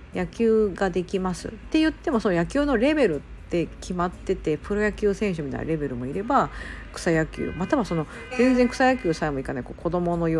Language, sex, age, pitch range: Japanese, female, 50-69, 170-245 Hz